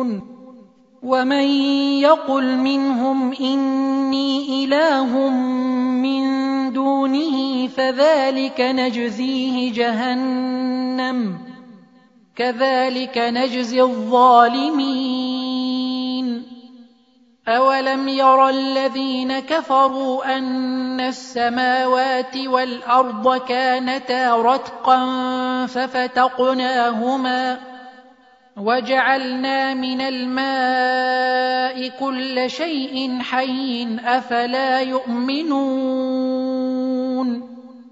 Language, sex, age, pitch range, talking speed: Arabic, male, 30-49, 255-265 Hz, 50 wpm